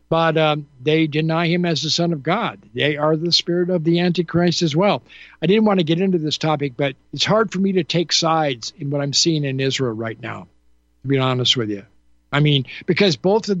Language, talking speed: English, 235 wpm